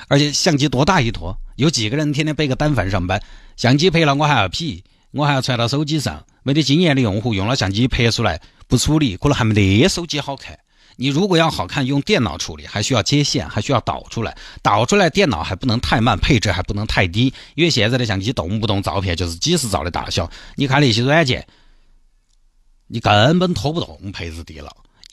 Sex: male